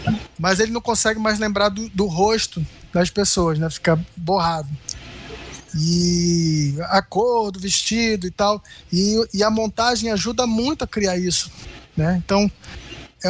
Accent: Brazilian